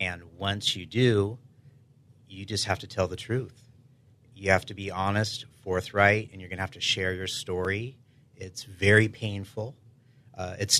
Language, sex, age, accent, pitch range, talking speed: English, male, 30-49, American, 95-125 Hz, 170 wpm